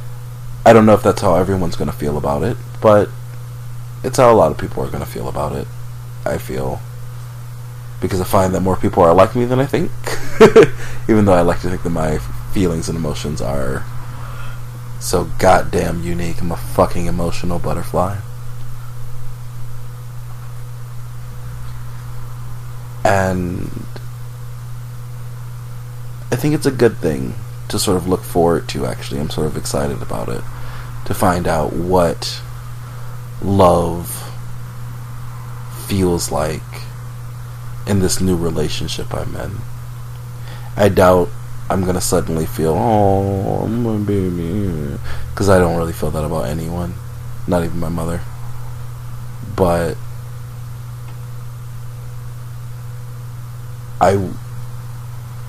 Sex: male